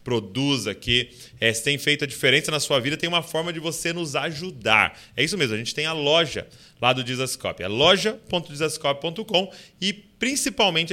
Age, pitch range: 20-39, 120-155 Hz